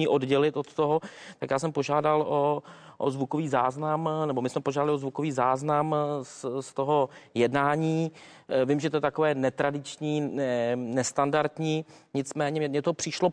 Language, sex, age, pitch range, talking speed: Czech, male, 30-49, 135-165 Hz, 150 wpm